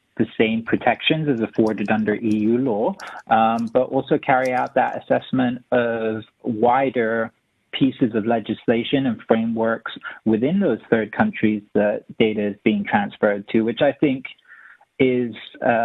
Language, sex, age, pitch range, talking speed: English, male, 30-49, 110-130 Hz, 135 wpm